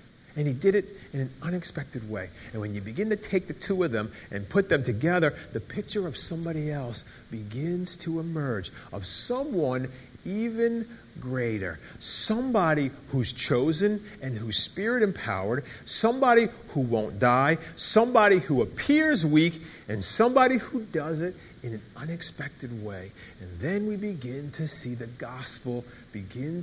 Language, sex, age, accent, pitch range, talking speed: English, male, 50-69, American, 120-195 Hz, 150 wpm